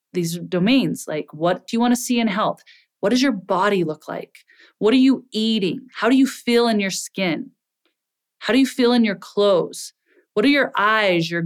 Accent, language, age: American, English, 30-49